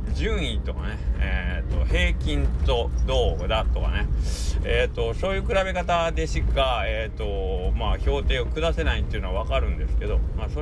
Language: Japanese